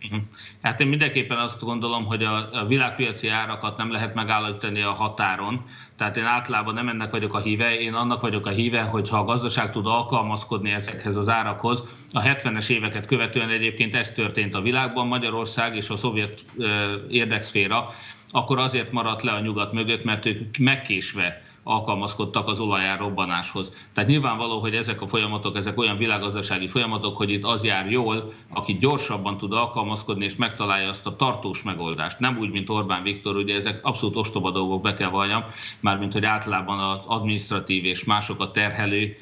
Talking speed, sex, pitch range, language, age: 165 wpm, male, 100-120 Hz, Hungarian, 30-49